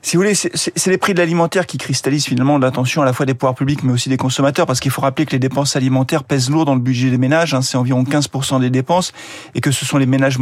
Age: 40-59